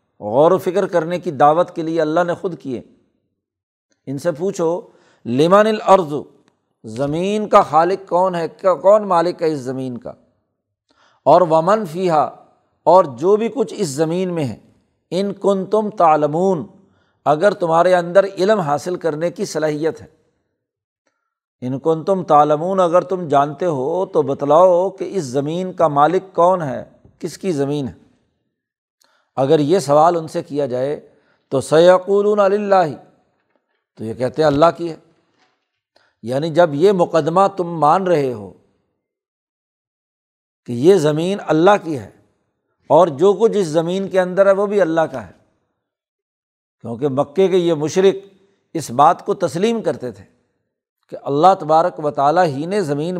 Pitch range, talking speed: 150-195 Hz, 155 wpm